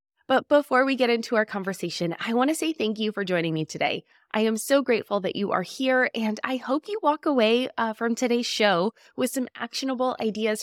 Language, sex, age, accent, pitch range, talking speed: English, female, 20-39, American, 190-260 Hz, 220 wpm